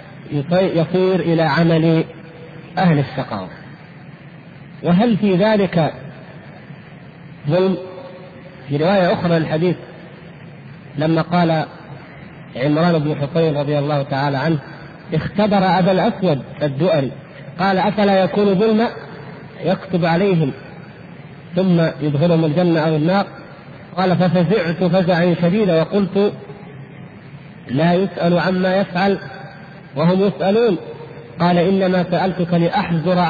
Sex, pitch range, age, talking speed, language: male, 155-190 Hz, 50-69, 95 wpm, Arabic